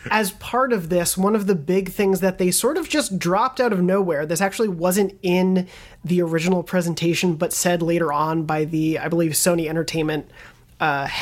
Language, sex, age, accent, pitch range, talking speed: English, male, 30-49, American, 165-200 Hz, 195 wpm